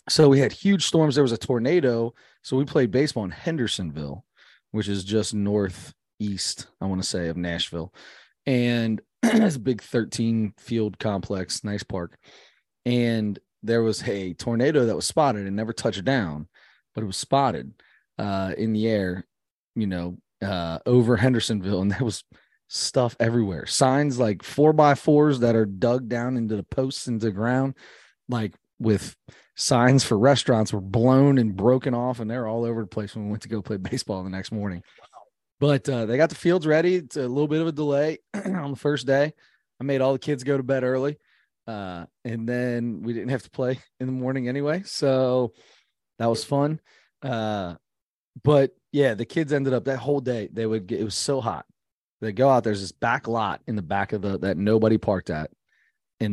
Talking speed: 195 wpm